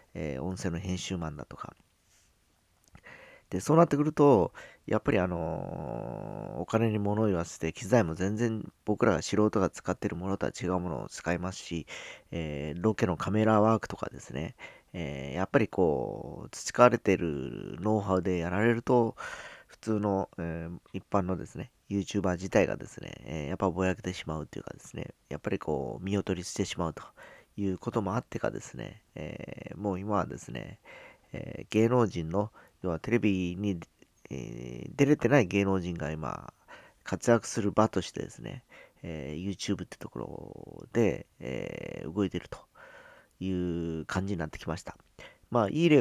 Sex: male